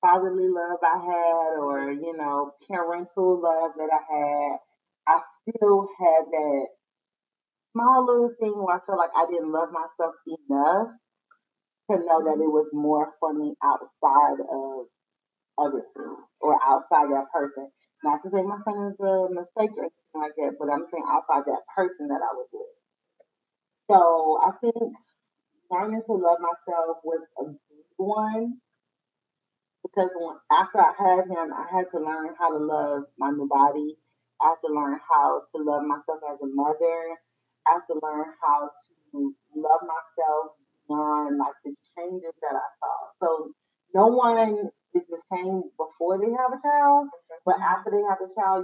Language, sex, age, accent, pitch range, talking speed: English, female, 30-49, American, 150-195 Hz, 165 wpm